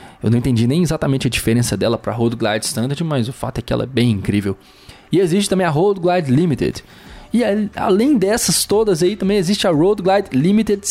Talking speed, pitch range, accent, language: 220 wpm, 115-160 Hz, Brazilian, Portuguese